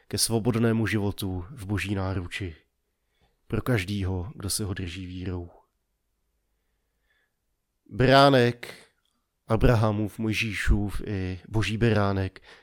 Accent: native